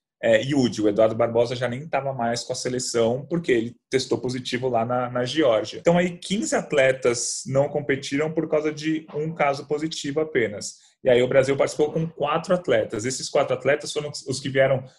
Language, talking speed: Portuguese, 195 wpm